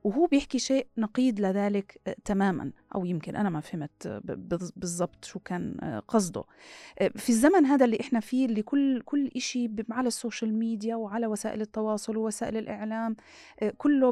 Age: 30-49